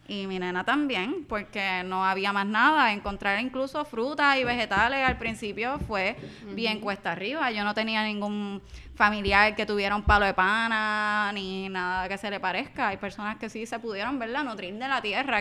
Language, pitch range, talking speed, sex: Spanish, 195-240 Hz, 190 wpm, female